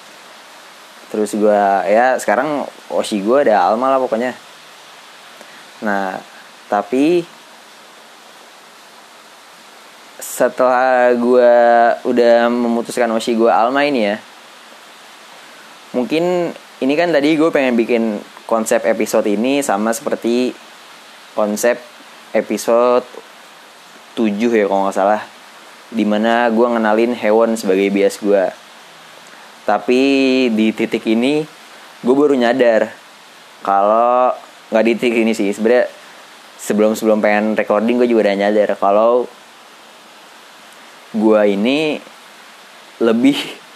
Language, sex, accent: Indonesian, male, native